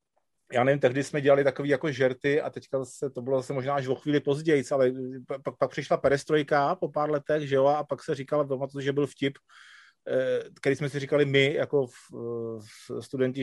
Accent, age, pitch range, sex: native, 30-49, 125-150 Hz, male